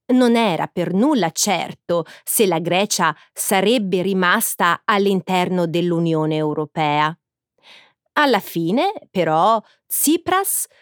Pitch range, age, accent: 170-285 Hz, 30-49, native